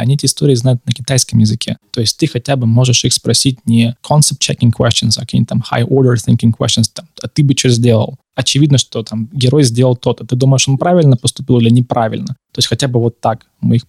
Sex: male